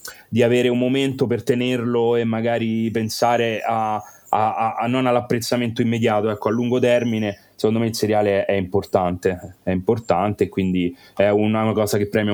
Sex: male